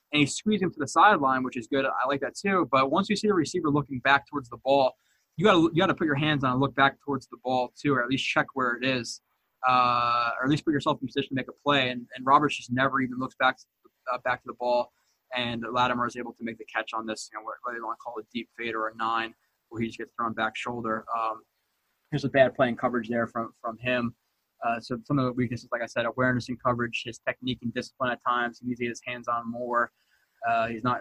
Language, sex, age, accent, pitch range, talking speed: English, male, 20-39, American, 120-135 Hz, 280 wpm